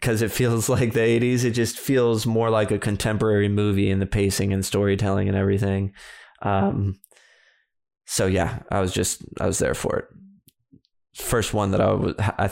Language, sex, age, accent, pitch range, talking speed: English, male, 20-39, American, 100-120 Hz, 175 wpm